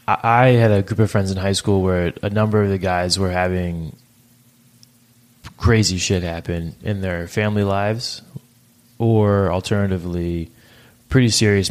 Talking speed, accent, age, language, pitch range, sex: 145 wpm, American, 20-39, English, 95-120 Hz, male